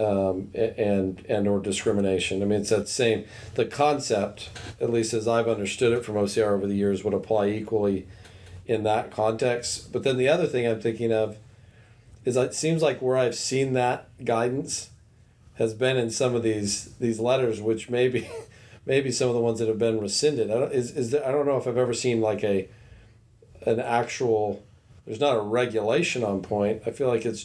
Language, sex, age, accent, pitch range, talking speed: English, male, 40-59, American, 105-120 Hz, 200 wpm